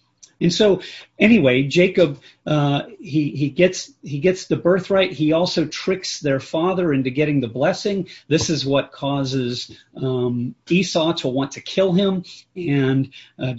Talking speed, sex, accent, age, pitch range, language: 150 wpm, male, American, 40-59, 140-185 Hz, English